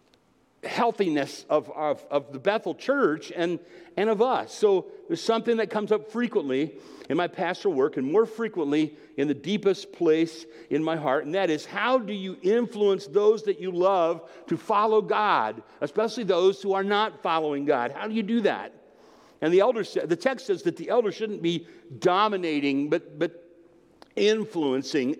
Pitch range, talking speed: 170-240 Hz, 175 wpm